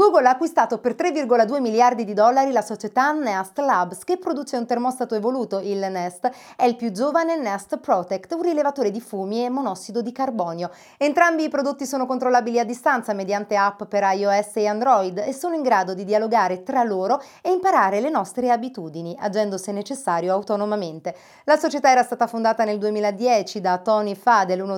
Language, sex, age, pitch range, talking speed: Italian, female, 30-49, 195-265 Hz, 180 wpm